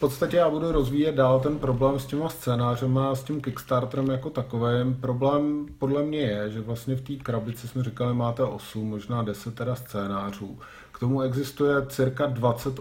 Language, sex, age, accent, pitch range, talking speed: Czech, male, 40-59, native, 115-135 Hz, 180 wpm